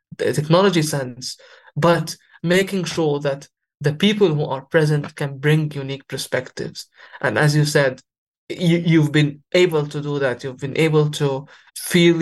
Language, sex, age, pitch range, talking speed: English, male, 20-39, 140-160 Hz, 155 wpm